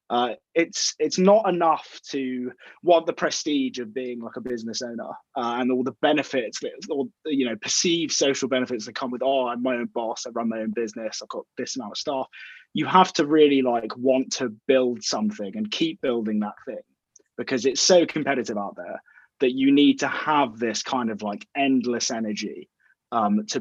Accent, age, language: British, 20-39, English